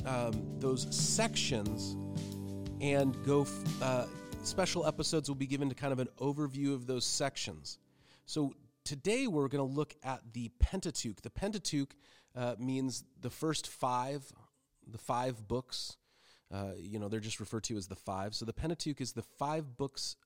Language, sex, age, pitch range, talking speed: English, male, 40-59, 110-140 Hz, 160 wpm